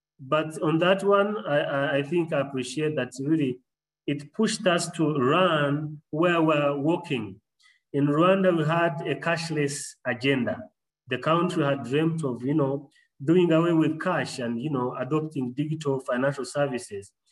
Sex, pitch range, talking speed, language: male, 135-170 Hz, 150 wpm, English